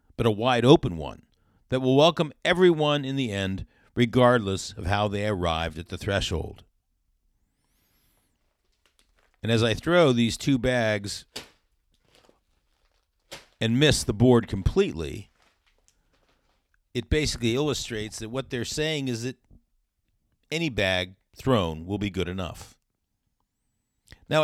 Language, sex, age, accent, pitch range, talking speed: English, male, 50-69, American, 95-130 Hz, 120 wpm